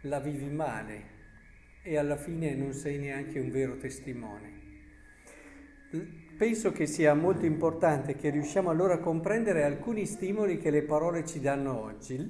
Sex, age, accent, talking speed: male, 50-69, native, 145 wpm